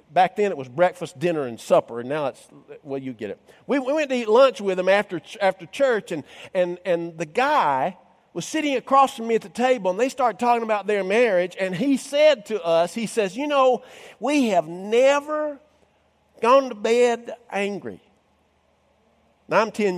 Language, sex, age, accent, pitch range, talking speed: English, male, 50-69, American, 175-265 Hz, 195 wpm